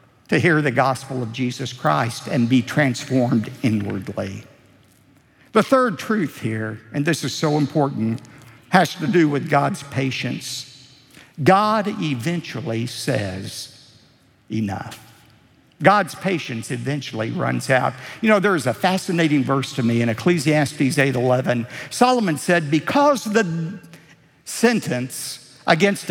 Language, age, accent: English, 60-79, American